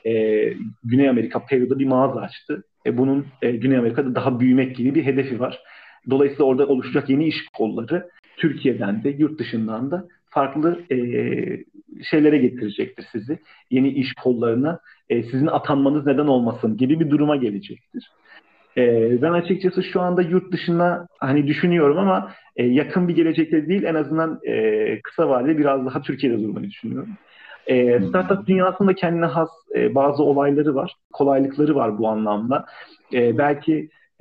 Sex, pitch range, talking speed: male, 130-160 Hz, 145 wpm